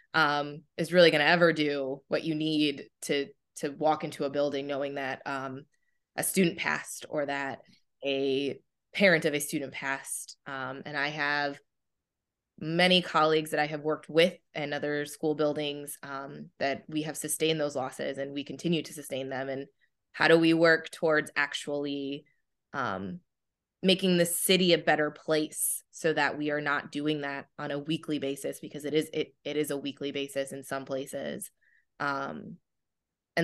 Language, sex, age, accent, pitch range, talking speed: English, female, 20-39, American, 140-160 Hz, 175 wpm